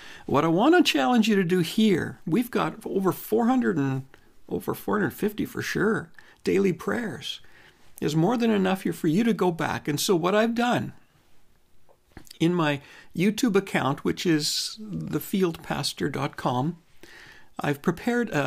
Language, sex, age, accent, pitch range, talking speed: English, male, 60-79, American, 165-220 Hz, 145 wpm